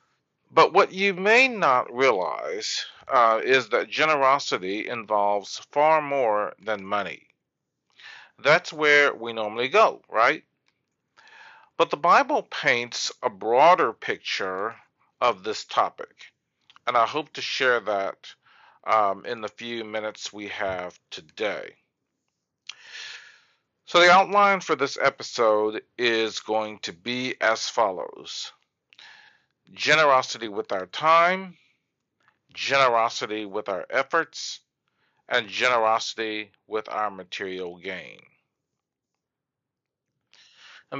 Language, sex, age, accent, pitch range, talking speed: English, male, 40-59, American, 110-165 Hz, 105 wpm